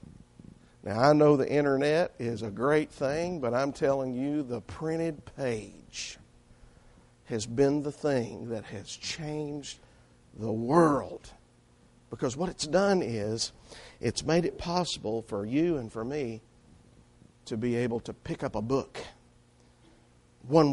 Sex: male